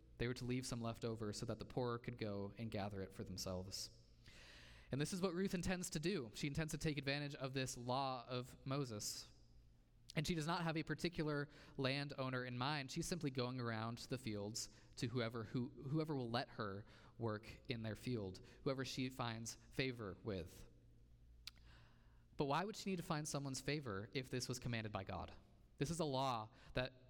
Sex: male